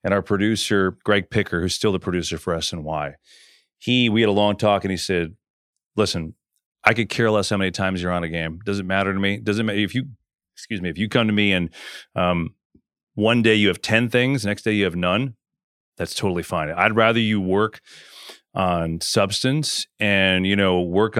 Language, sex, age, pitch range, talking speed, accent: English, male, 30-49, 95-120 Hz, 215 wpm, American